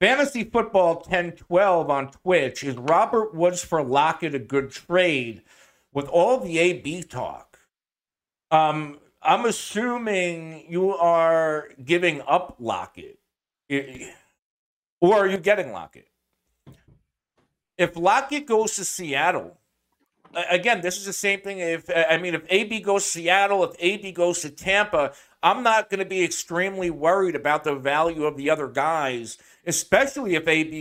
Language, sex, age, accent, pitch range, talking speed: English, male, 50-69, American, 155-195 Hz, 140 wpm